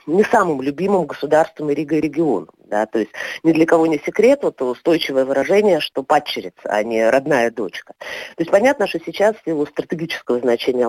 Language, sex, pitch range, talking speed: Russian, female, 155-220 Hz, 175 wpm